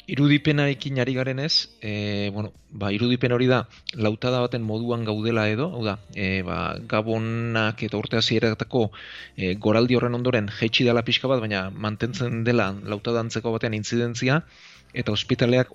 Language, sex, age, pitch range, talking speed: Spanish, male, 30-49, 105-120 Hz, 150 wpm